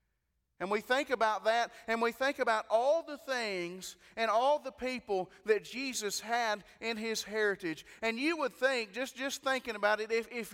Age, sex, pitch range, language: 30-49, male, 205-245 Hz, English